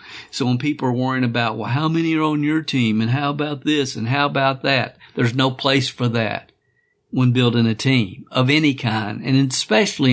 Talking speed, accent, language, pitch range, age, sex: 205 wpm, American, English, 130-150 Hz, 50-69, male